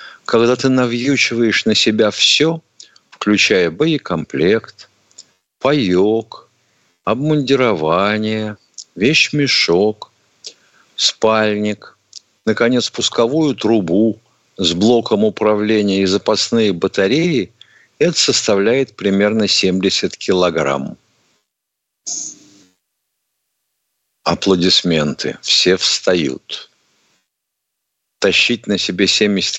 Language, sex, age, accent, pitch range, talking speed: Russian, male, 50-69, native, 90-110 Hz, 65 wpm